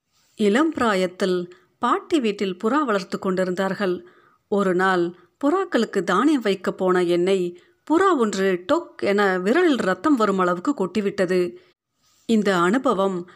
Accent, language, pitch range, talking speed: native, Tamil, 185-245 Hz, 110 wpm